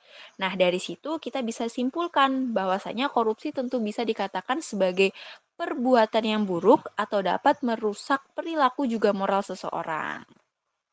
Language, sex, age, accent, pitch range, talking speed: Indonesian, female, 20-39, native, 215-280 Hz, 120 wpm